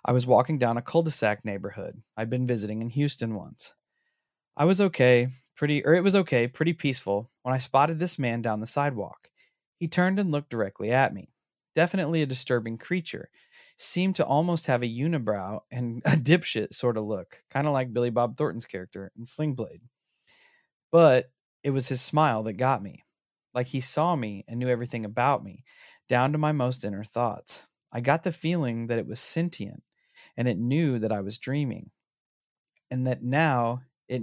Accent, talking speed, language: American, 190 wpm, English